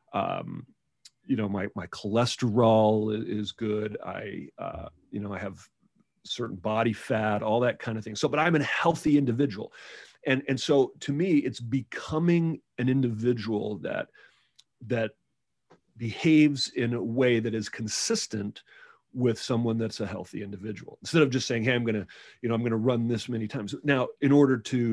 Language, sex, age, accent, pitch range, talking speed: English, male, 40-59, American, 105-130 Hz, 175 wpm